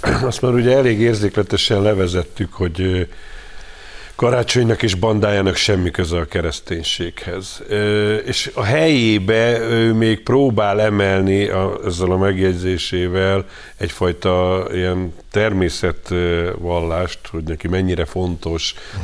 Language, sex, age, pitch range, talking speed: Hungarian, male, 50-69, 90-105 Hz, 100 wpm